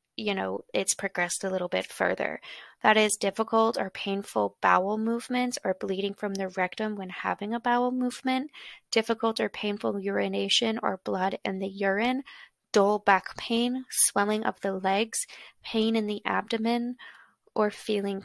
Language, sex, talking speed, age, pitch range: English, female, 155 wpm, 20-39, 190-225 Hz